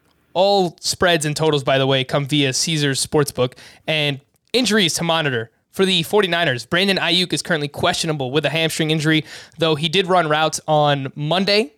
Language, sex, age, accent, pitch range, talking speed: English, male, 20-39, American, 140-170 Hz, 175 wpm